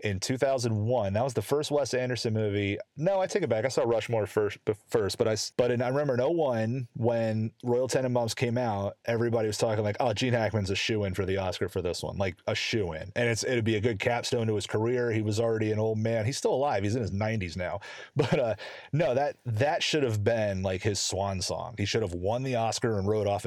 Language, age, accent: English, 30-49, American